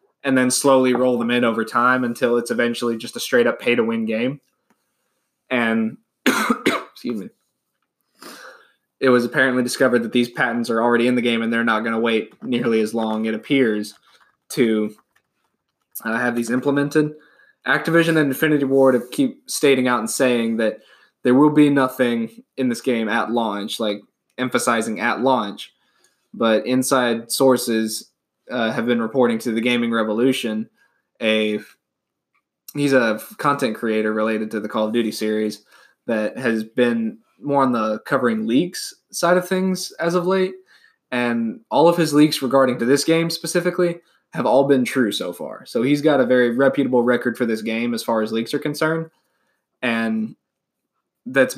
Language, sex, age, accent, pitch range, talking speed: English, male, 20-39, American, 115-140 Hz, 170 wpm